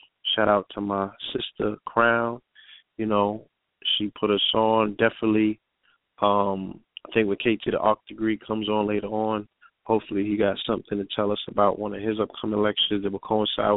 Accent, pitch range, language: American, 100-110 Hz, English